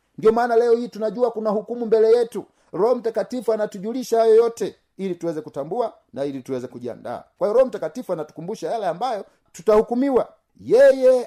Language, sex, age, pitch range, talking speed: Swahili, male, 50-69, 180-245 Hz, 160 wpm